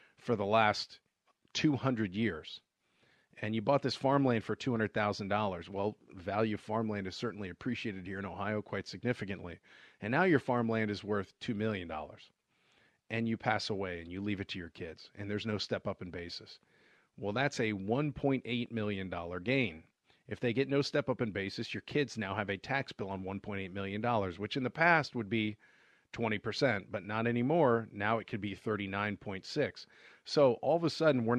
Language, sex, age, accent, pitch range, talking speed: English, male, 40-59, American, 100-120 Hz, 180 wpm